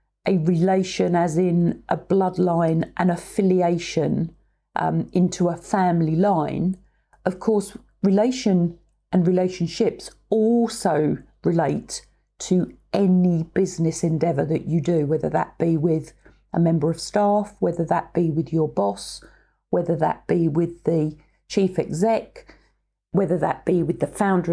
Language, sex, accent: English, female, British